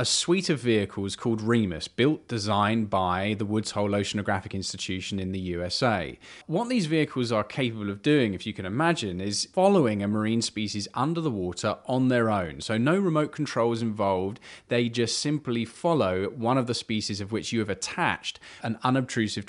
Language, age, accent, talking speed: English, 20-39, British, 180 wpm